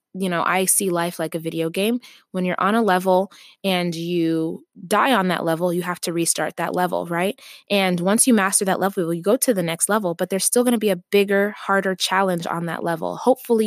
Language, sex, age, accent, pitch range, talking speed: English, female, 20-39, American, 175-215 Hz, 235 wpm